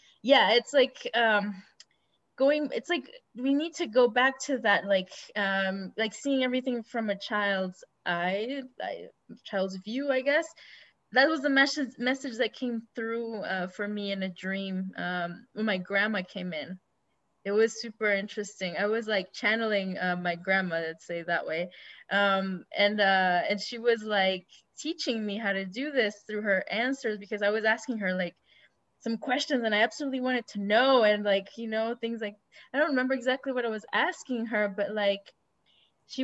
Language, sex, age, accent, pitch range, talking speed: English, female, 10-29, Canadian, 195-245 Hz, 185 wpm